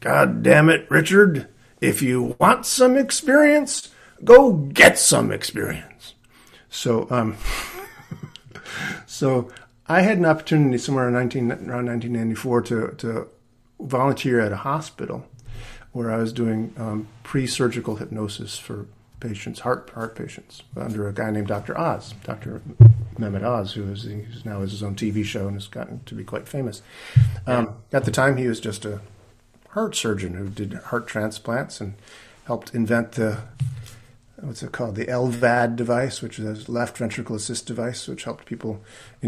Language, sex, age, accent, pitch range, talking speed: English, male, 50-69, American, 110-125 Hz, 160 wpm